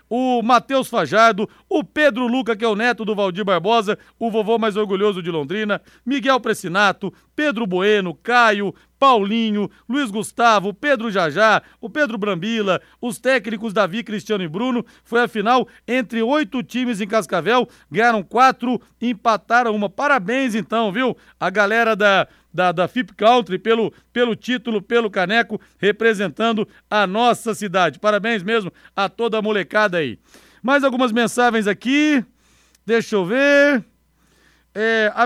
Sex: male